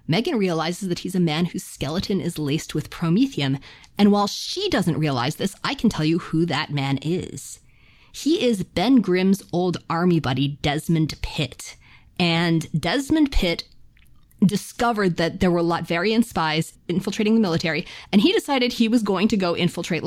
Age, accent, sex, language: 30-49, American, female, English